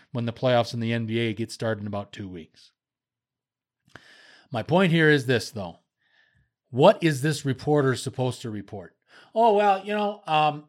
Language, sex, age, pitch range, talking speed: English, male, 40-59, 115-140 Hz, 170 wpm